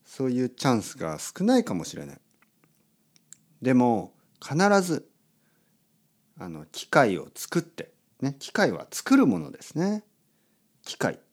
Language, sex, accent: Japanese, male, native